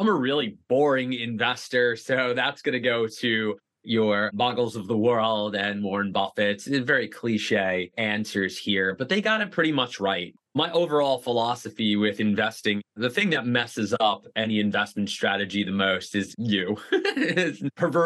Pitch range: 105-130 Hz